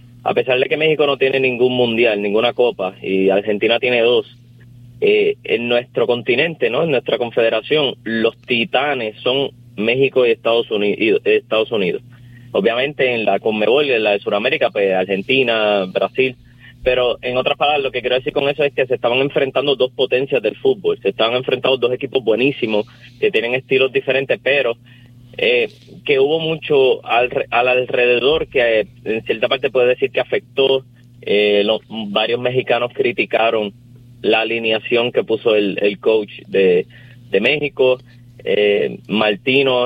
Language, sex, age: Spanish, male, 30-49